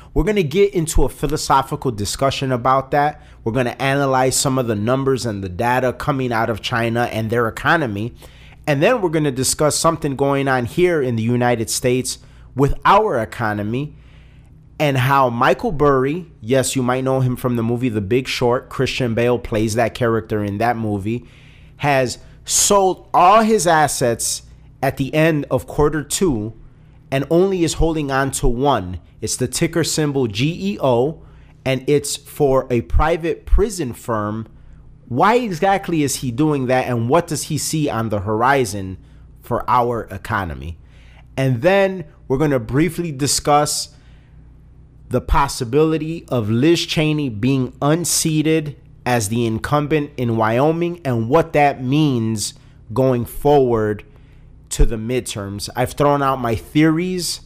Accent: American